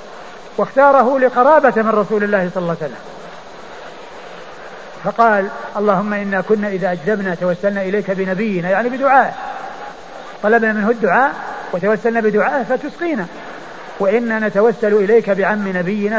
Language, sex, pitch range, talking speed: Arabic, male, 200-245 Hz, 115 wpm